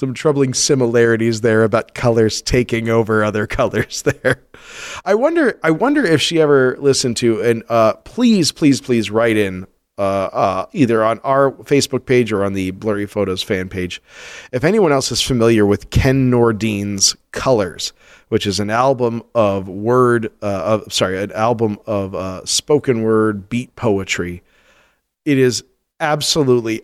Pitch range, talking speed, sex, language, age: 105-135 Hz, 155 wpm, male, English, 40-59